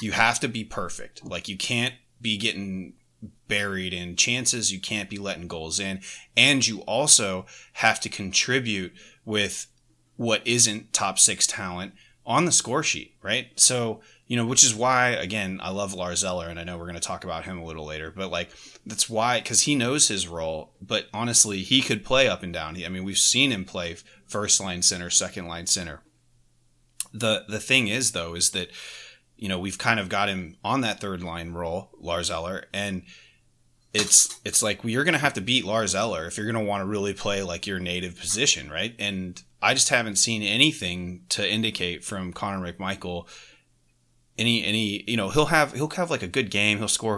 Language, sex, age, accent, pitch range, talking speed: English, male, 30-49, American, 90-115 Hz, 200 wpm